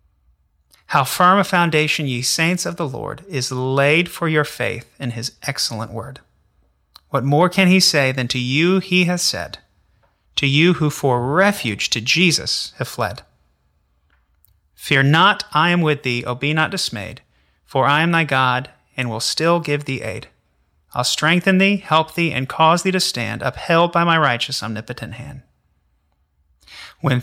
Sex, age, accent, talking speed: male, 30-49, American, 170 wpm